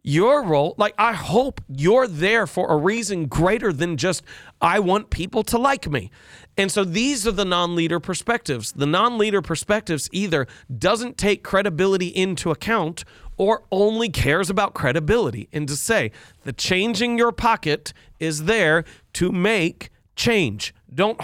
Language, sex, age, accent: English, male, 40-59, American